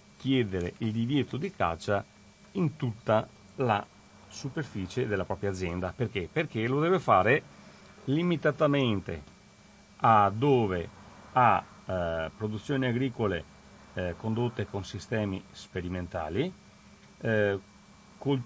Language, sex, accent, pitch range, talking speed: Italian, male, native, 100-130 Hz, 100 wpm